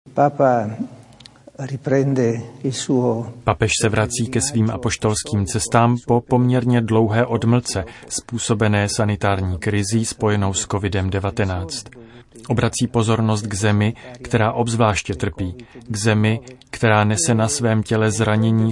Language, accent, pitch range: Czech, native, 110-120 Hz